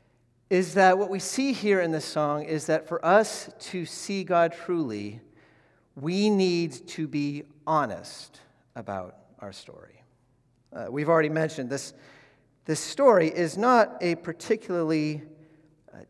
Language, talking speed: English, 140 wpm